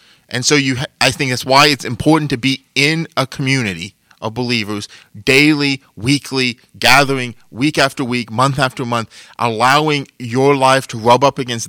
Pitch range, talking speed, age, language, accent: 125-150 Hz, 165 wpm, 30-49, English, American